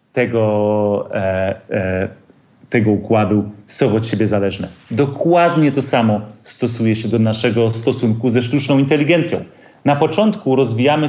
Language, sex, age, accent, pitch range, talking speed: Polish, male, 30-49, native, 110-140 Hz, 115 wpm